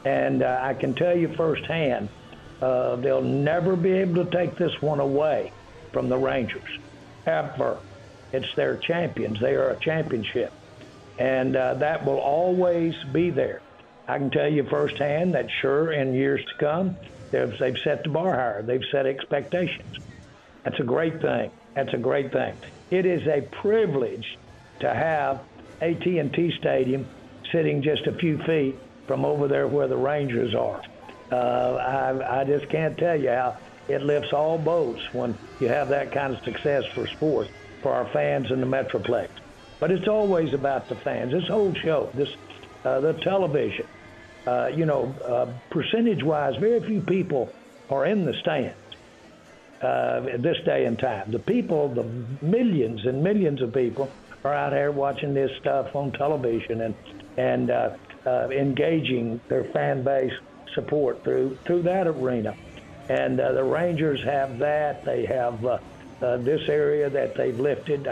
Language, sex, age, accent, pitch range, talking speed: English, male, 60-79, American, 125-160 Hz, 160 wpm